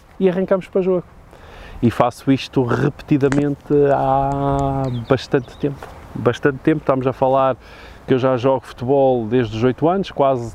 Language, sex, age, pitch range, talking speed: Portuguese, male, 20-39, 105-130 Hz, 150 wpm